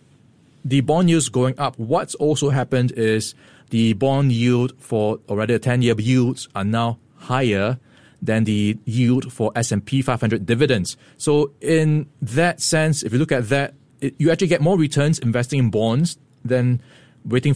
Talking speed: 155 wpm